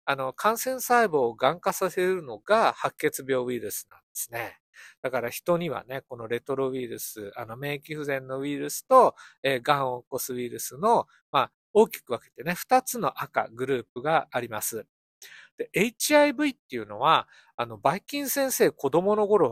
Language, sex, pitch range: Japanese, male, 130-205 Hz